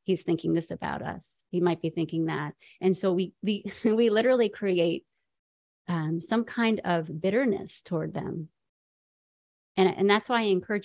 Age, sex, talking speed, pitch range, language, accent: 30-49, female, 165 wpm, 170-200 Hz, English, American